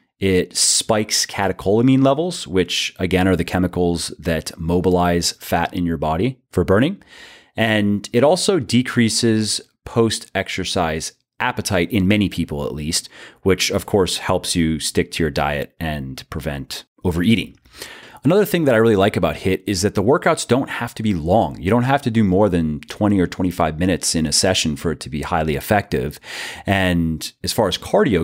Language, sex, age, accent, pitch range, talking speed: English, male, 30-49, American, 85-110 Hz, 175 wpm